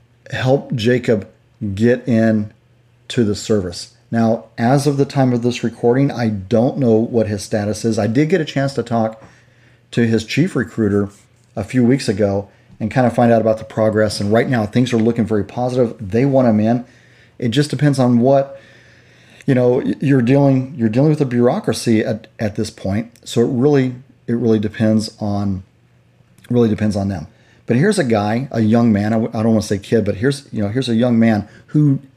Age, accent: 40-59, American